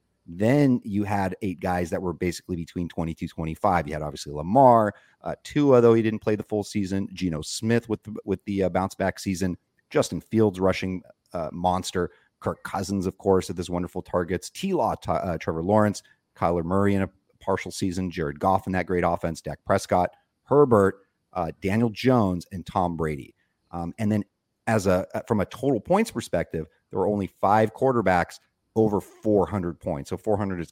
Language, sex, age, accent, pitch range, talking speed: English, male, 40-59, American, 85-110 Hz, 190 wpm